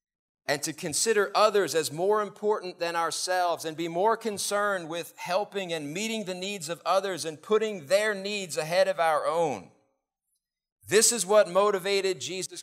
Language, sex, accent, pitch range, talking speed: English, male, American, 165-200 Hz, 160 wpm